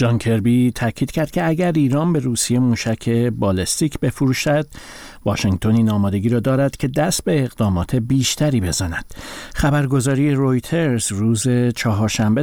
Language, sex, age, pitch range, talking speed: Persian, male, 50-69, 105-135 Hz, 125 wpm